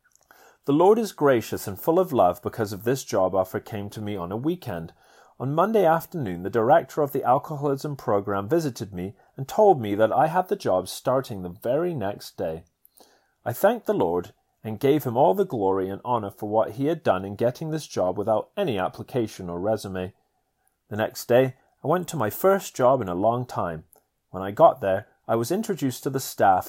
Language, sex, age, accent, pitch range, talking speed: English, male, 30-49, British, 100-150 Hz, 205 wpm